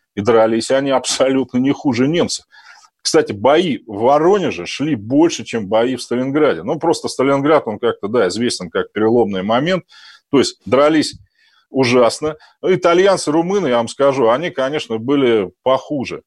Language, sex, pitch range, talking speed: Russian, male, 120-165 Hz, 150 wpm